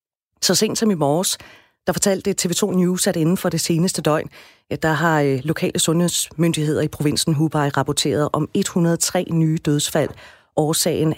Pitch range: 150-185 Hz